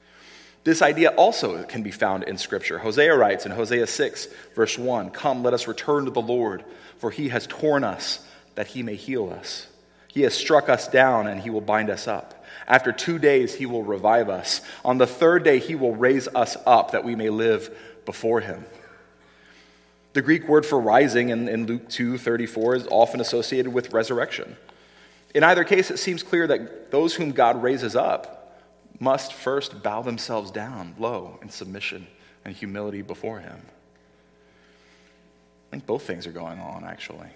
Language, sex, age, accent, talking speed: English, male, 30-49, American, 180 wpm